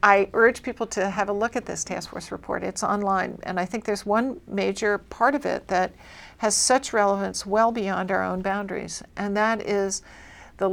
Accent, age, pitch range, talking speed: American, 60-79, 180-215 Hz, 200 wpm